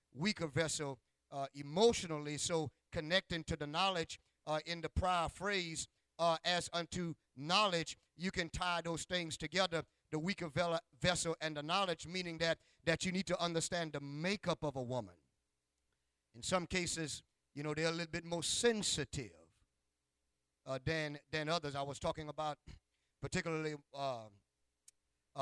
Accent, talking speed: American, 150 wpm